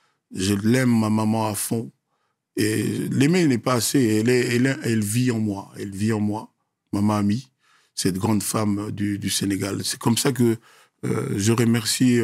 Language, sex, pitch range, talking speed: French, male, 105-125 Hz, 185 wpm